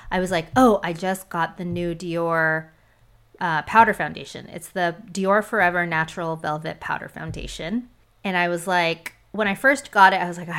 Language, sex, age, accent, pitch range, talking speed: English, female, 20-39, American, 165-200 Hz, 185 wpm